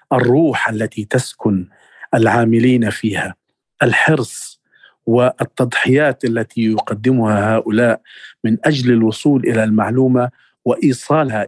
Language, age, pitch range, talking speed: Arabic, 40-59, 115-135 Hz, 85 wpm